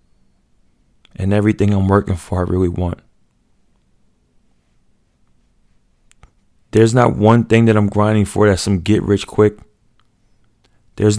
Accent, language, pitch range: American, English, 85-105 Hz